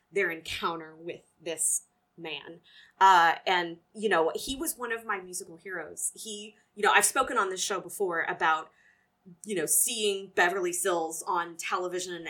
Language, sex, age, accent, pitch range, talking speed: English, female, 20-39, American, 180-305 Hz, 160 wpm